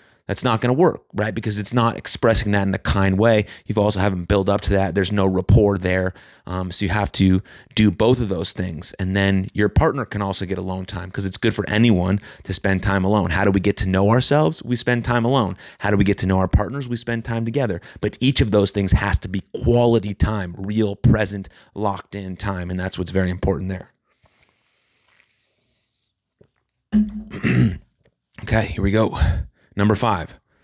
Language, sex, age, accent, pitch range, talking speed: English, male, 30-49, American, 95-110 Hz, 200 wpm